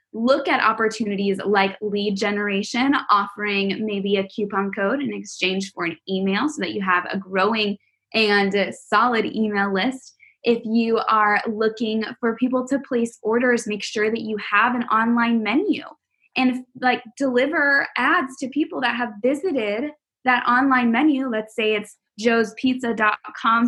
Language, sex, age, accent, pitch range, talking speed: English, female, 10-29, American, 205-260 Hz, 150 wpm